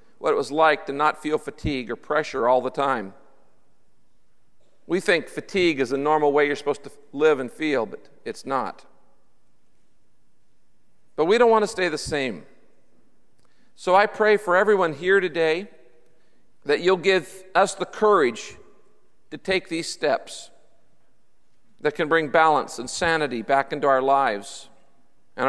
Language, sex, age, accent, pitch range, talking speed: English, male, 50-69, American, 135-170 Hz, 155 wpm